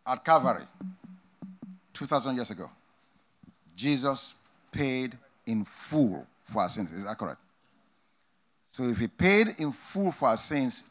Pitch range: 130-190 Hz